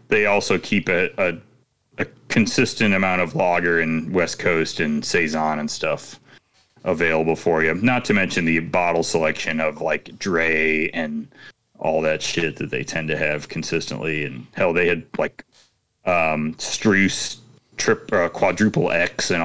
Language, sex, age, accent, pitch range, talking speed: English, male, 30-49, American, 80-105 Hz, 155 wpm